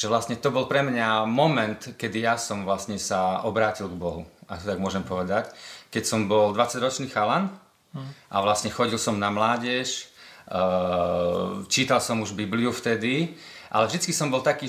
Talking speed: 170 wpm